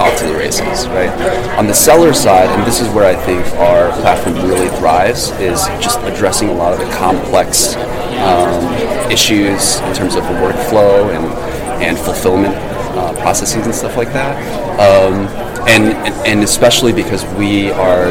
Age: 30-49